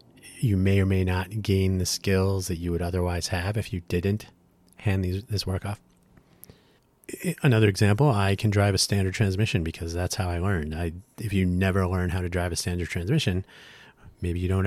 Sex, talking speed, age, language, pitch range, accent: male, 190 wpm, 30-49, English, 85-110 Hz, American